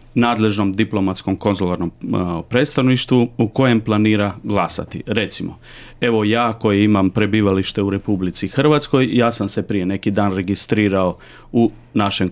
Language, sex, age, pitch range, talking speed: Croatian, male, 40-59, 95-115 Hz, 125 wpm